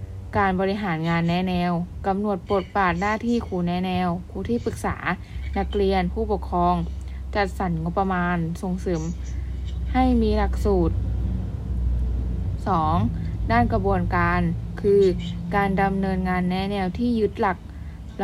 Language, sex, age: Thai, female, 20-39